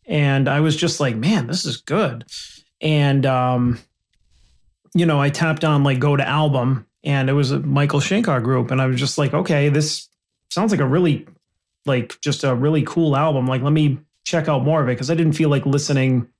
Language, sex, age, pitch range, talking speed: English, male, 30-49, 130-160 Hz, 210 wpm